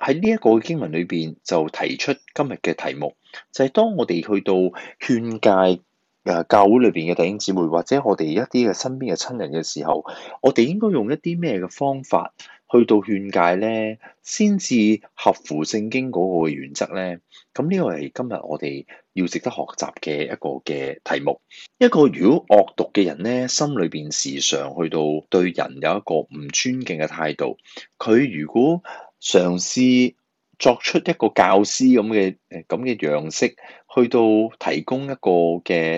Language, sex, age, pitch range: Chinese, male, 30-49, 85-130 Hz